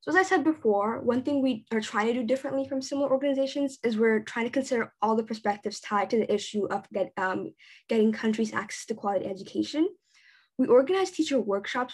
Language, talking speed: English, 200 wpm